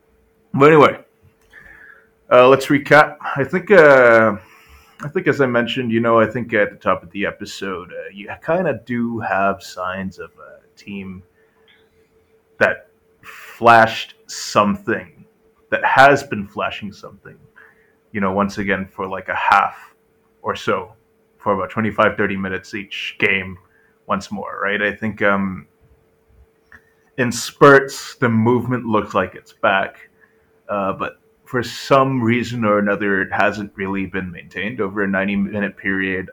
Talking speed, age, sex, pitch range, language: 145 wpm, 30-49, male, 95-120 Hz, English